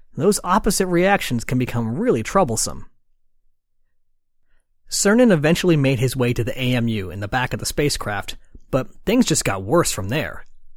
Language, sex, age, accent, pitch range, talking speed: English, male, 30-49, American, 120-180 Hz, 155 wpm